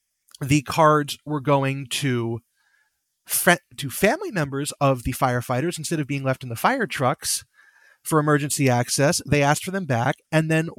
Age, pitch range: 30-49, 150-205 Hz